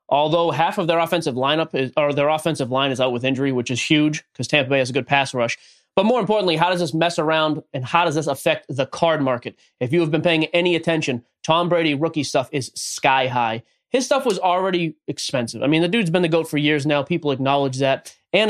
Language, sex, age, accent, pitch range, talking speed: English, male, 20-39, American, 135-165 Hz, 245 wpm